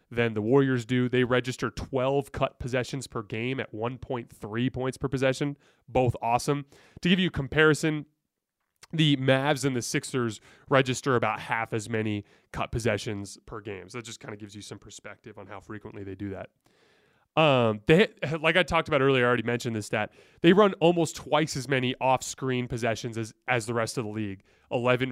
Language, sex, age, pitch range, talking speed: English, male, 30-49, 110-135 Hz, 190 wpm